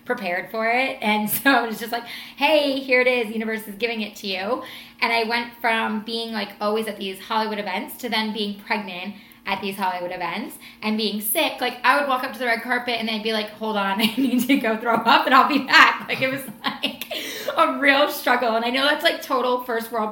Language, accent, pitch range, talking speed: English, American, 215-255 Hz, 235 wpm